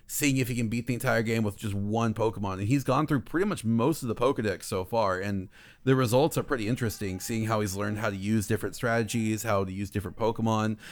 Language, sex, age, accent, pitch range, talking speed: English, male, 30-49, American, 105-120 Hz, 240 wpm